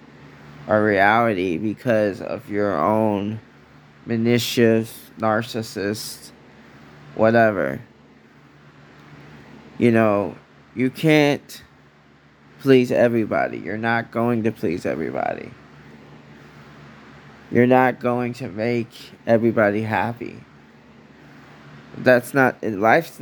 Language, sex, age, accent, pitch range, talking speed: English, male, 20-39, American, 95-120 Hz, 80 wpm